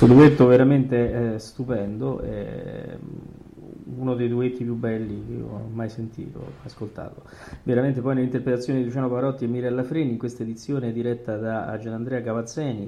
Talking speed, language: 150 wpm, Italian